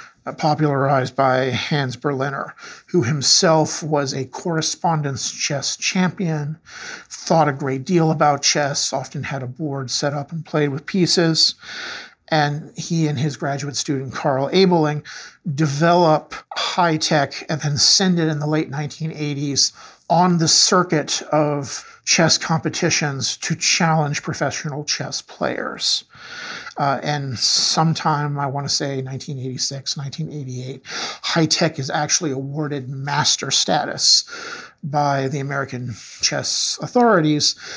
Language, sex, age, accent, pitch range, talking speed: English, male, 50-69, American, 140-165 Hz, 120 wpm